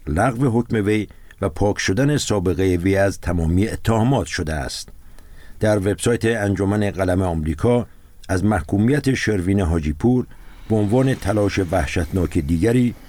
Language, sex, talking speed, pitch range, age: Persian, male, 130 wpm, 85-115 Hz, 60-79